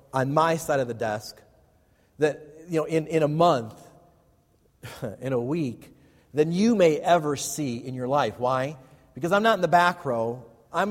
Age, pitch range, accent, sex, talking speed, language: 40-59, 115-155 Hz, American, male, 180 wpm, English